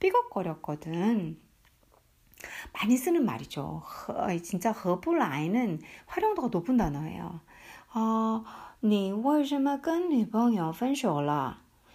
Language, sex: Korean, female